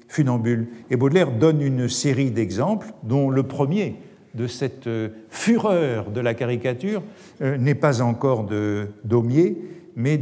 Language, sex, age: French, male, 50-69